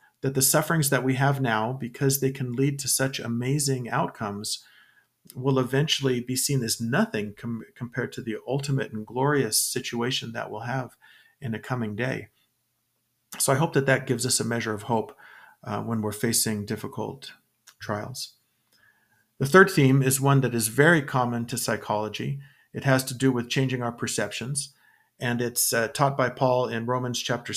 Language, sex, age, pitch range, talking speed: English, male, 40-59, 115-135 Hz, 175 wpm